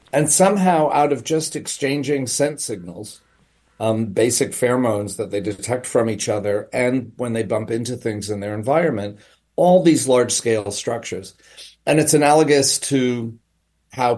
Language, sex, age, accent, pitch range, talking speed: English, male, 40-59, American, 105-130 Hz, 150 wpm